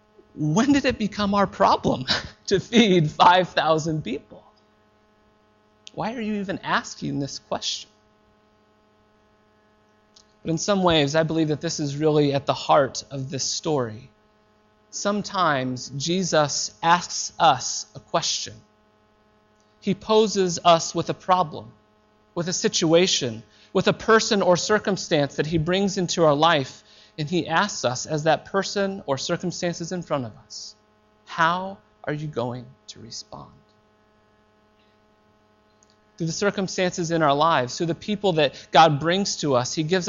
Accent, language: American, English